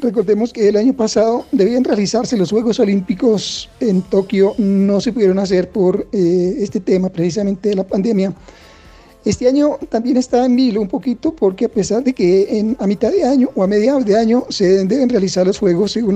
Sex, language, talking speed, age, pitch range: male, Spanish, 195 wpm, 40-59, 185-225 Hz